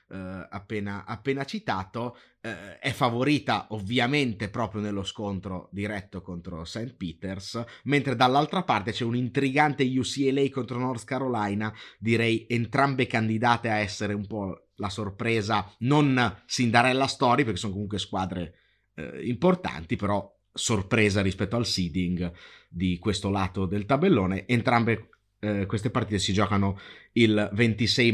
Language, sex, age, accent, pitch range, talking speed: Italian, male, 30-49, native, 100-130 Hz, 120 wpm